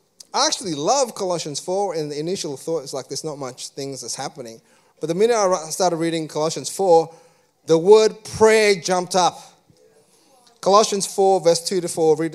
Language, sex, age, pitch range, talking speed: English, male, 30-49, 145-185 Hz, 180 wpm